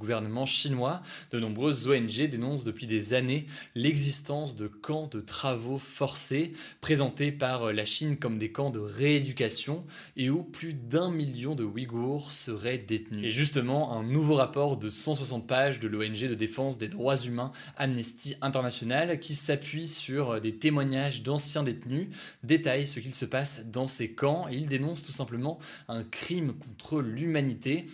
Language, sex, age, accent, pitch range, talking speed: French, male, 20-39, French, 120-150 Hz, 160 wpm